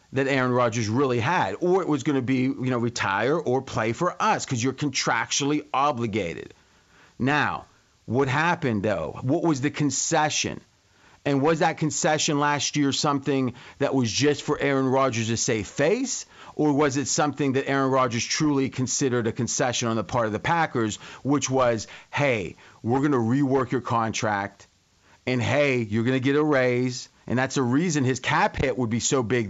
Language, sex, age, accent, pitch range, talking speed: English, male, 40-59, American, 125-155 Hz, 185 wpm